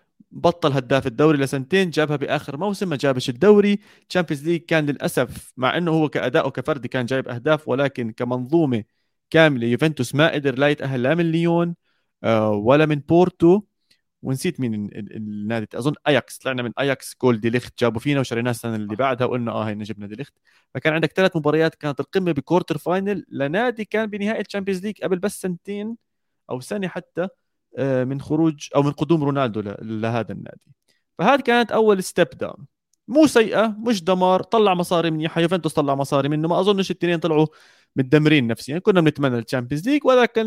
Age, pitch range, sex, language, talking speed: 30-49, 130-185 Hz, male, Arabic, 175 wpm